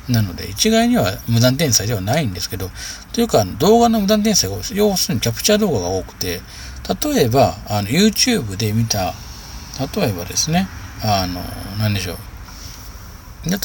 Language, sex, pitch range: Japanese, male, 95-145 Hz